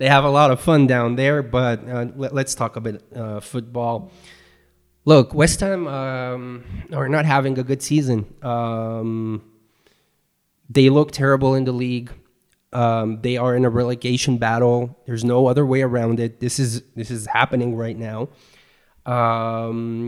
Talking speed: 160 wpm